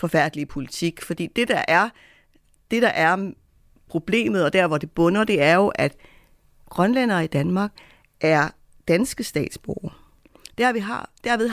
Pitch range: 165-225 Hz